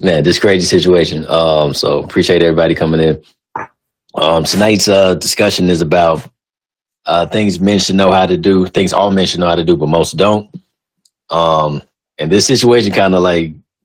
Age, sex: 30-49, male